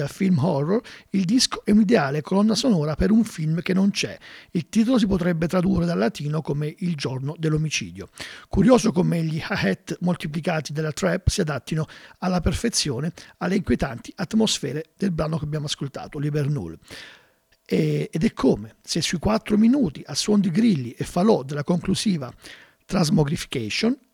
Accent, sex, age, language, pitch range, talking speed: native, male, 50-69, Italian, 150-200 Hz, 160 wpm